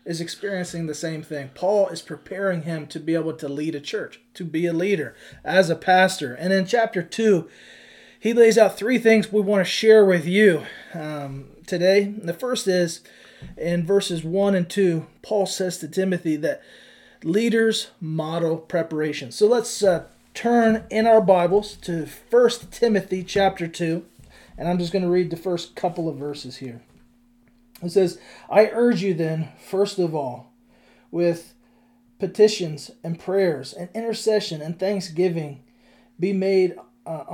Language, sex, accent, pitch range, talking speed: English, male, American, 160-205 Hz, 160 wpm